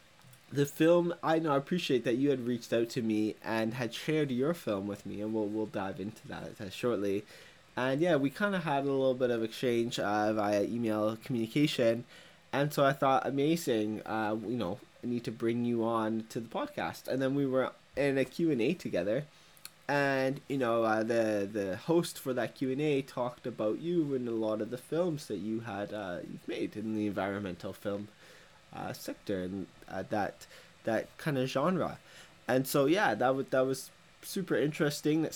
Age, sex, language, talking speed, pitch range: 20-39, male, English, 195 wpm, 110-140 Hz